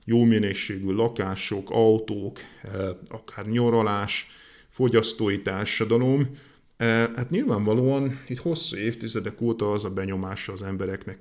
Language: Hungarian